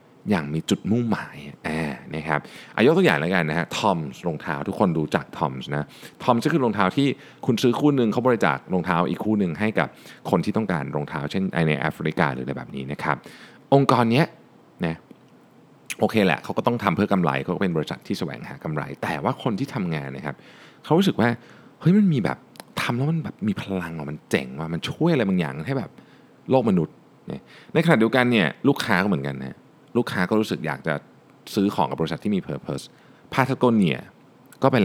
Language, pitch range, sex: Thai, 80-115 Hz, male